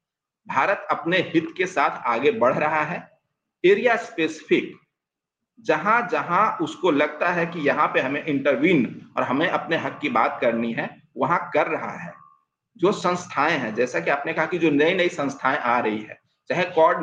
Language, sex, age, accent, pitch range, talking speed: Hindi, male, 50-69, native, 145-220 Hz, 170 wpm